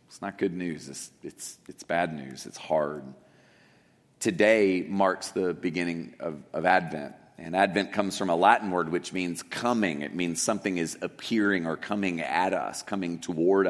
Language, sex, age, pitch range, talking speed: English, male, 40-59, 90-105 Hz, 170 wpm